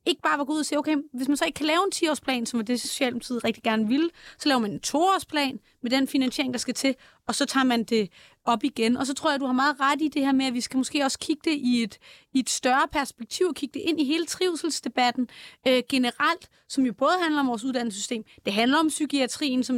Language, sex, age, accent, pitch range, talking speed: Danish, female, 30-49, native, 235-285 Hz, 265 wpm